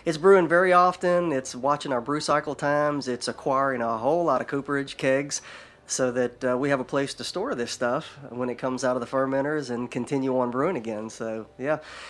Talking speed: 215 wpm